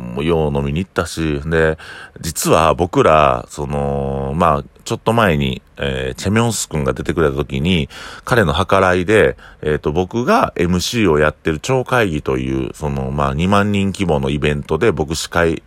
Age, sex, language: 40-59, male, Japanese